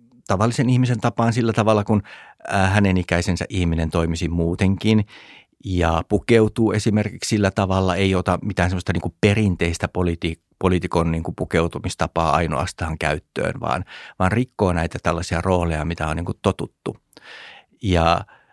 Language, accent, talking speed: Finnish, native, 120 wpm